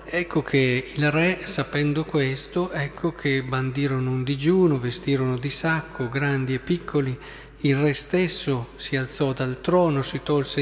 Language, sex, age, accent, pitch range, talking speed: Italian, male, 40-59, native, 135-185 Hz, 145 wpm